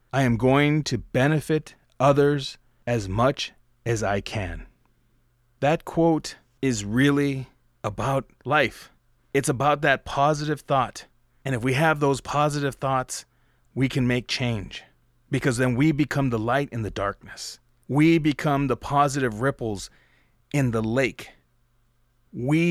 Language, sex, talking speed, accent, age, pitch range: English, male, 135 wpm, American, 30-49, 115-140 Hz